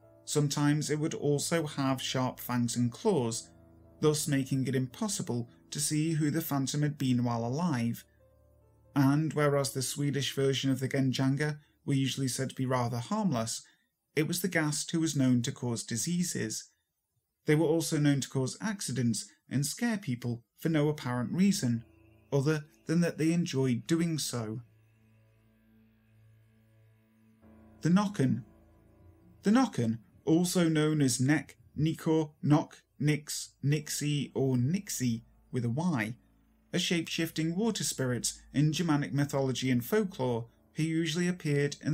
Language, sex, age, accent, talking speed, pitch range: English, male, 30-49, British, 140 wpm, 115-160 Hz